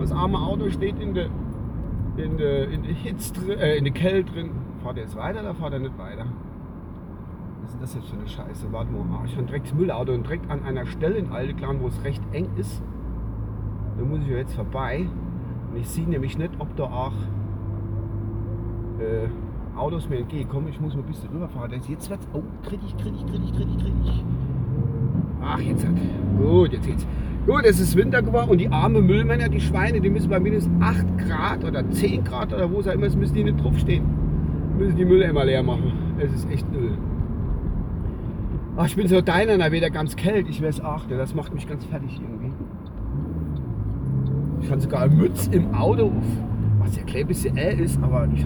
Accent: German